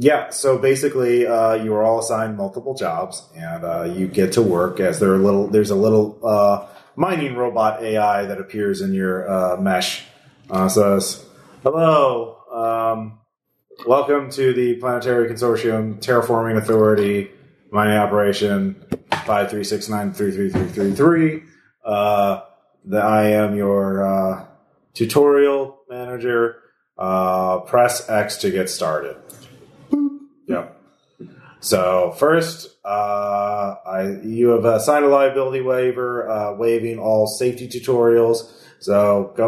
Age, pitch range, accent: 30-49, 100-125 Hz, American